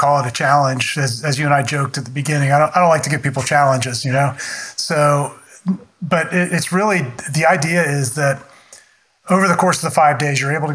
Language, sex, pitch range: English, male, 135-160 Hz